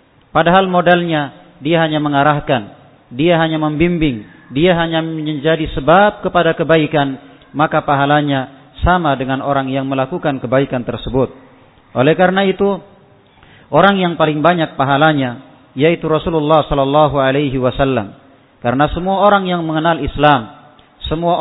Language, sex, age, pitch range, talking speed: Indonesian, male, 40-59, 135-160 Hz, 120 wpm